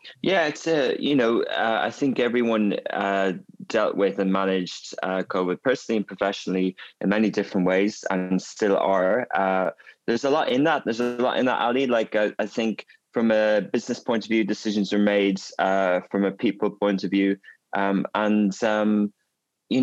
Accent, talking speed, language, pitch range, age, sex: British, 190 wpm, English, 95-110 Hz, 20-39, male